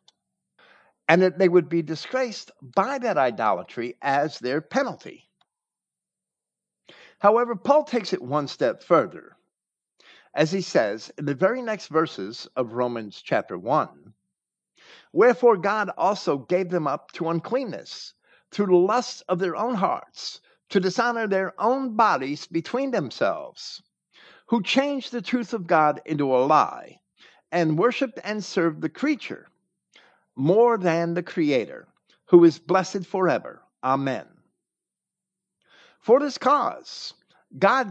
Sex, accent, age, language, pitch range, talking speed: male, American, 50-69, English, 160-235 Hz, 130 wpm